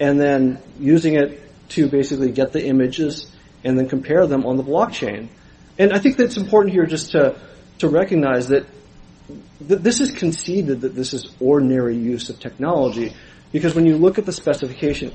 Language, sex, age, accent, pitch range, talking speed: English, male, 40-59, American, 135-165 Hz, 180 wpm